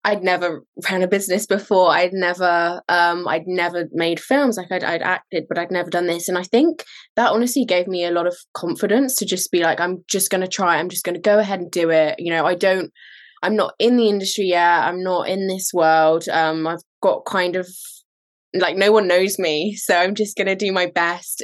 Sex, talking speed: female, 235 wpm